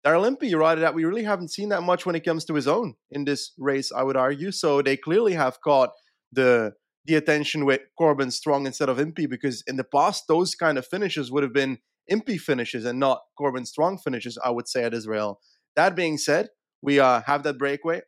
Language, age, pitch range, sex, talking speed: English, 30-49, 135-175 Hz, male, 225 wpm